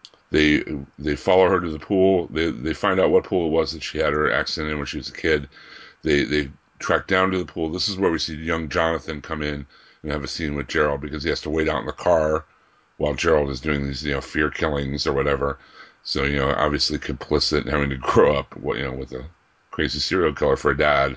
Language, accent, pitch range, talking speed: English, American, 70-80 Hz, 250 wpm